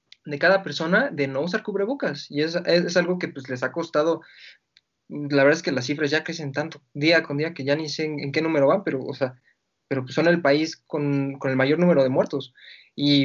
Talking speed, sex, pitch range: 245 wpm, male, 140-180 Hz